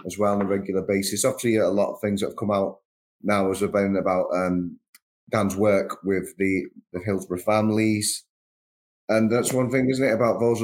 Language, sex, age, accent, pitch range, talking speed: English, male, 30-49, British, 95-110 Hz, 195 wpm